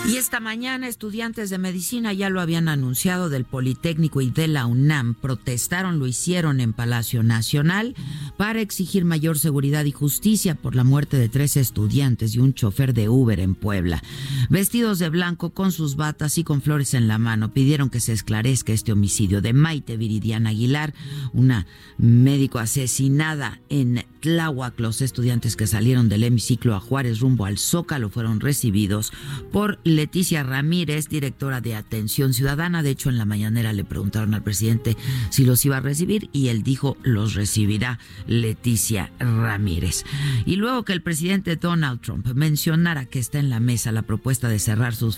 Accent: Mexican